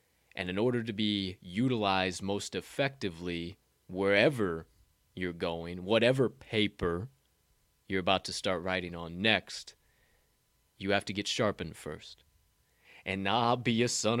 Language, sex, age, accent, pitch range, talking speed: English, male, 20-39, American, 95-120 Hz, 130 wpm